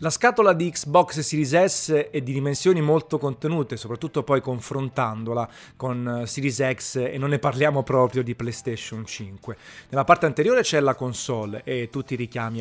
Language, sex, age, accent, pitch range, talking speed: Italian, male, 30-49, native, 120-150 Hz, 165 wpm